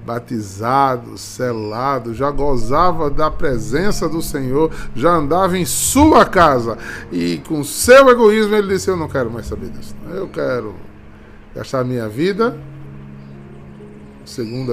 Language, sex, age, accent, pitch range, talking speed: Portuguese, male, 20-39, Brazilian, 105-175 Hz, 130 wpm